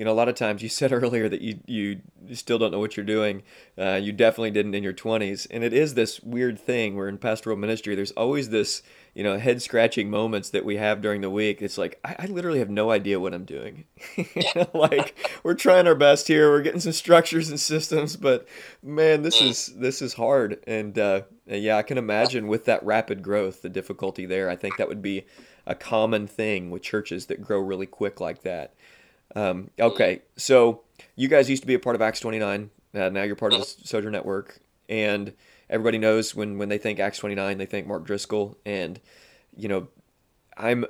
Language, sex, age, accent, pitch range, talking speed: English, male, 20-39, American, 100-120 Hz, 215 wpm